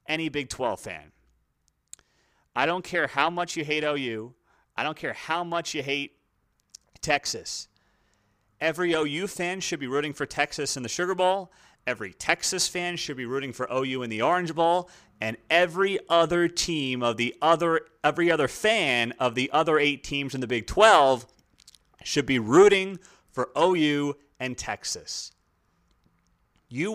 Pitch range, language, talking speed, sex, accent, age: 130-175 Hz, English, 160 wpm, male, American, 30-49